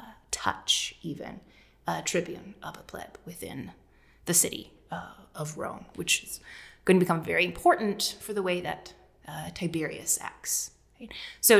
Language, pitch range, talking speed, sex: English, 170-215 Hz, 155 wpm, female